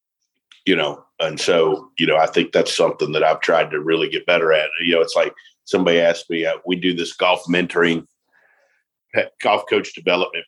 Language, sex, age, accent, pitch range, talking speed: English, male, 50-69, American, 85-100 Hz, 195 wpm